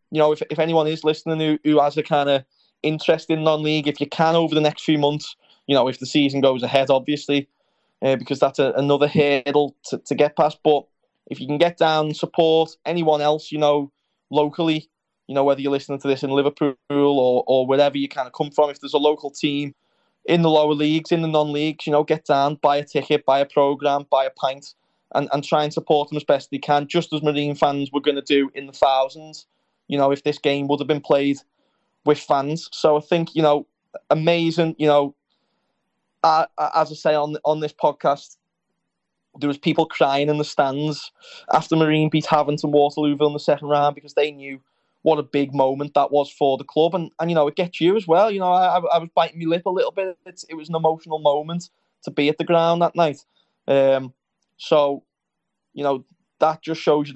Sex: male